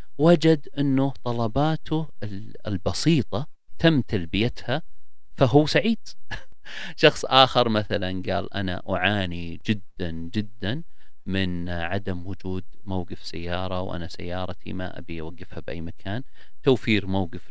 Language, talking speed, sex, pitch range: English, 105 wpm, male, 85-105 Hz